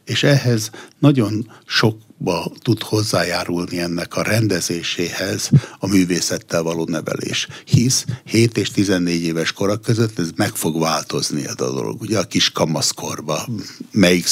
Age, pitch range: 60-79, 85-115 Hz